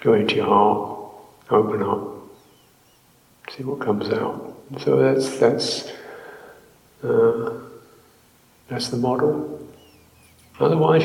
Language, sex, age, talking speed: English, male, 50-69, 100 wpm